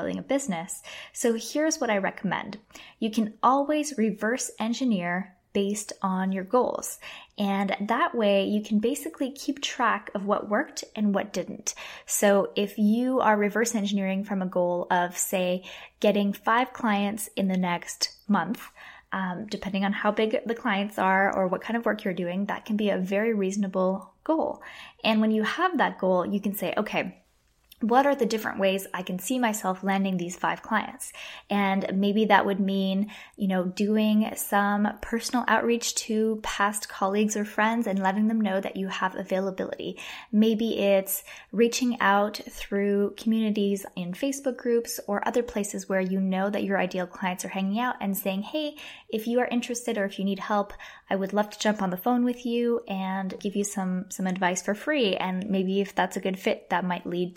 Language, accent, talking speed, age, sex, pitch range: English, American, 190 wpm, 10-29, female, 190-225 Hz